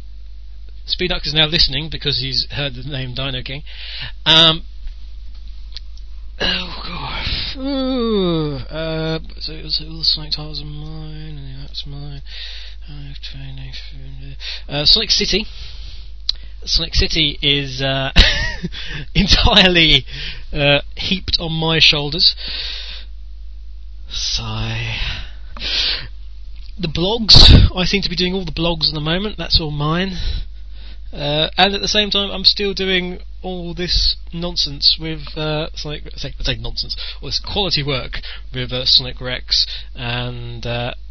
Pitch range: 115-160 Hz